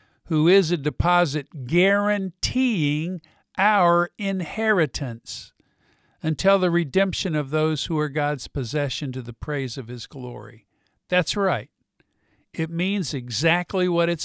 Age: 50-69